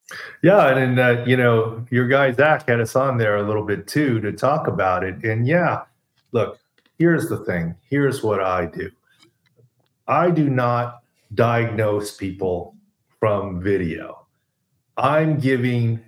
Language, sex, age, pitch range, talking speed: English, male, 40-59, 110-135 Hz, 150 wpm